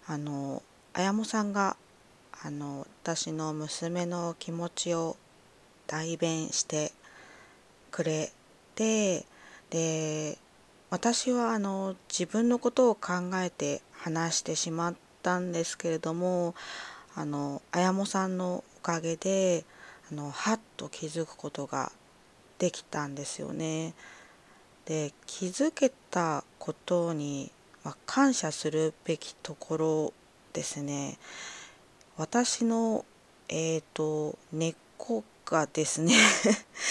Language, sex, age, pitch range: Japanese, female, 20-39, 155-185 Hz